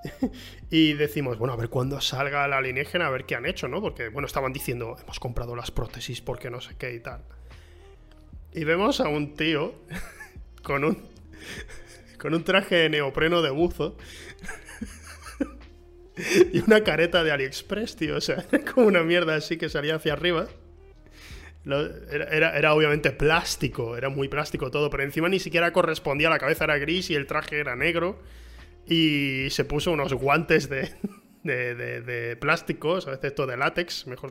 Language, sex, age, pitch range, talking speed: Spanish, male, 20-39, 125-170 Hz, 170 wpm